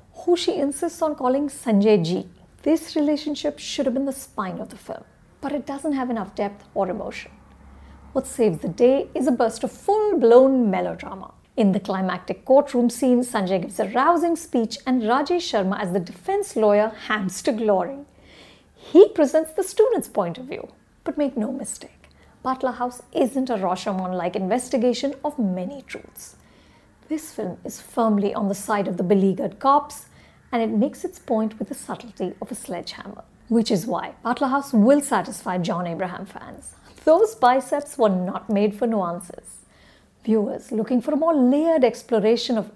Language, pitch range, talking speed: English, 170-280 Hz, 170 wpm